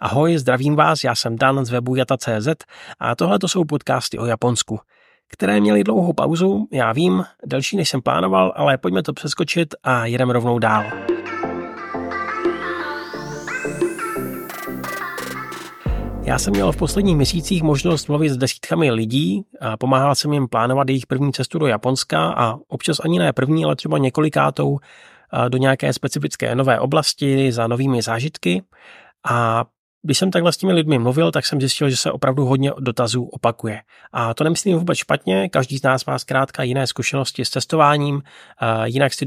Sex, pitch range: male, 120-150 Hz